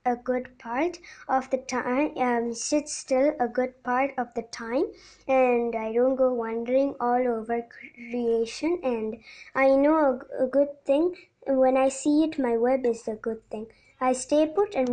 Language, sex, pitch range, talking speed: Tamil, male, 230-260 Hz, 175 wpm